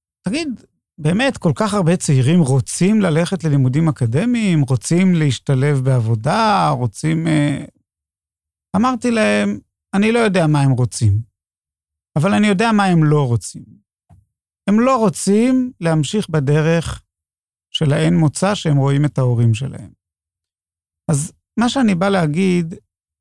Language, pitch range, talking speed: Hebrew, 125-205 Hz, 120 wpm